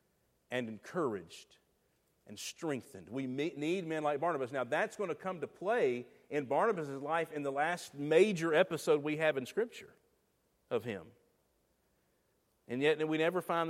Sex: male